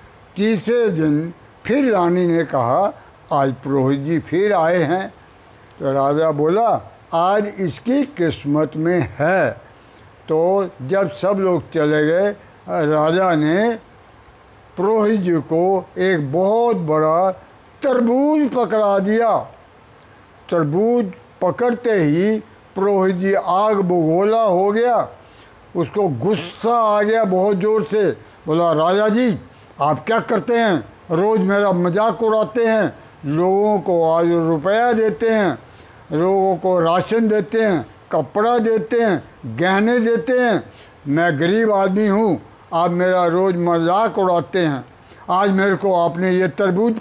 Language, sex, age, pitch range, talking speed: Punjabi, male, 60-79, 165-220 Hz, 125 wpm